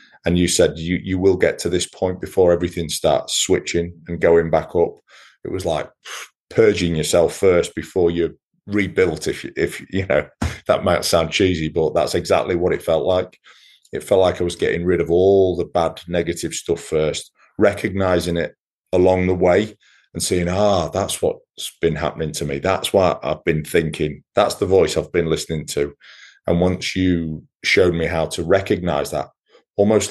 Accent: British